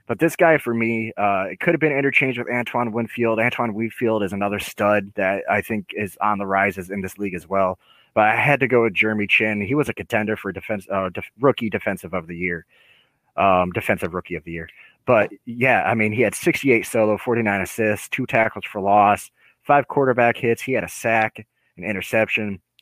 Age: 30-49